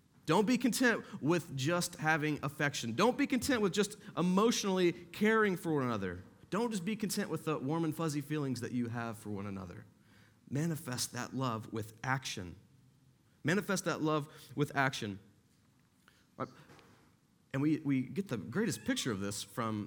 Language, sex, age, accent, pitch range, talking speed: English, male, 30-49, American, 130-185 Hz, 160 wpm